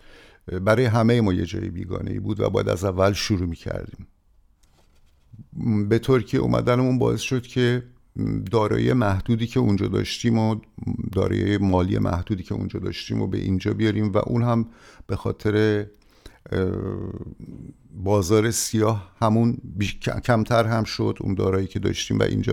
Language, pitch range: English, 95-115 Hz